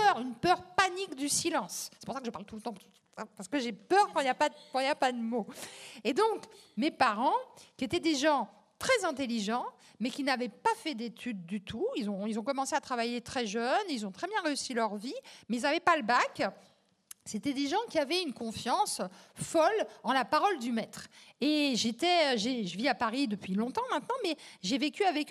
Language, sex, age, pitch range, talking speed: French, female, 50-69, 230-315 Hz, 225 wpm